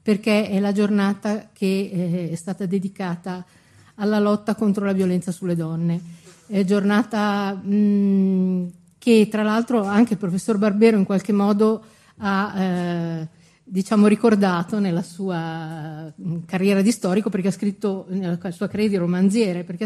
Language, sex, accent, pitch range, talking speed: Italian, female, native, 175-210 Hz, 135 wpm